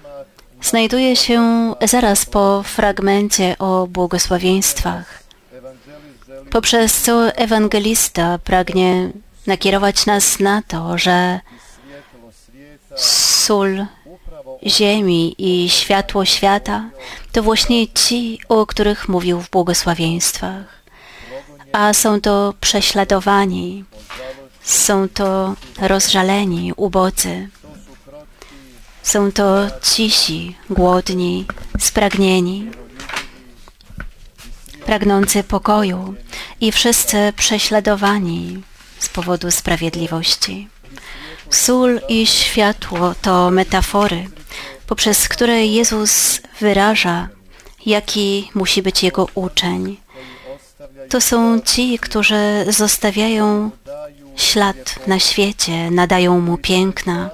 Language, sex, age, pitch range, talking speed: Polish, female, 30-49, 175-210 Hz, 80 wpm